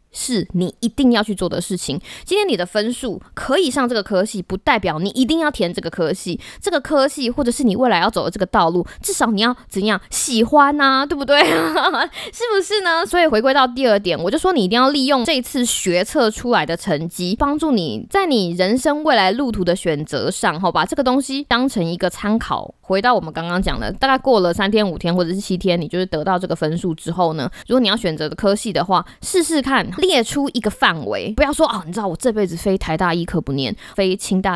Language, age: Chinese, 20-39